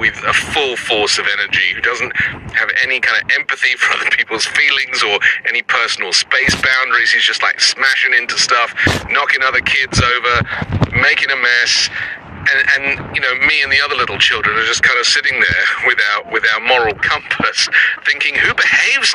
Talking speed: 185 wpm